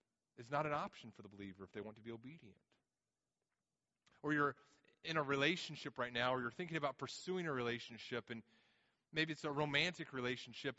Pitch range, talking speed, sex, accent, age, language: 120-160 Hz, 185 wpm, male, American, 30-49, English